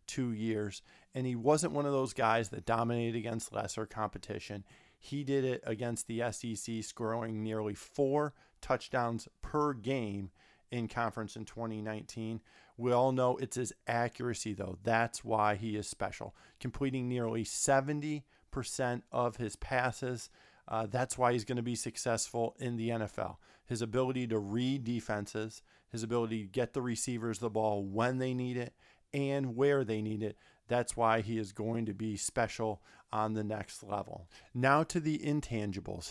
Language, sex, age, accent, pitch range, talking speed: English, male, 40-59, American, 110-130 Hz, 160 wpm